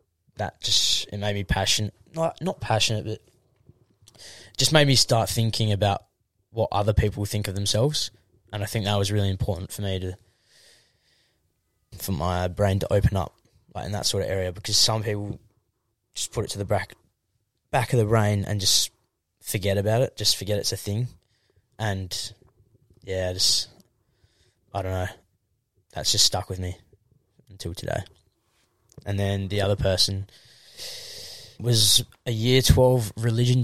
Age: 10-29